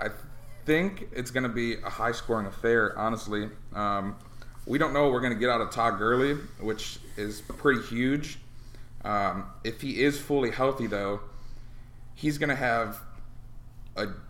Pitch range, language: 105-120 Hz, English